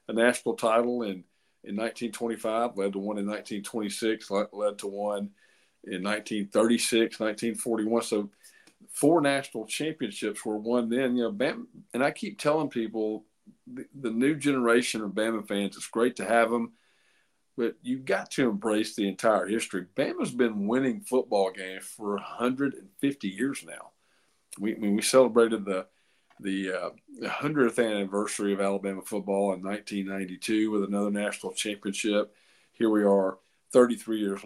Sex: male